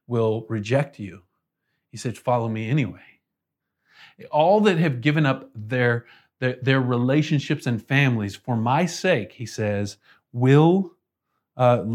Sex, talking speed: male, 130 wpm